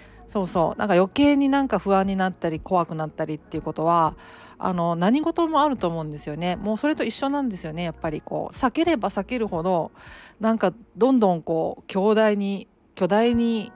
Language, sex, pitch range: Japanese, female, 170-235 Hz